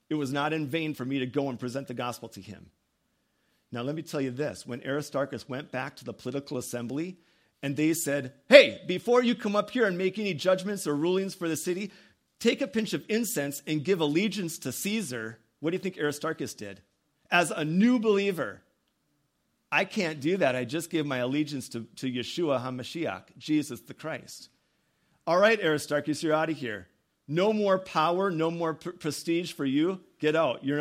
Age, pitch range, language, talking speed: 40-59, 135-175 Hz, English, 195 wpm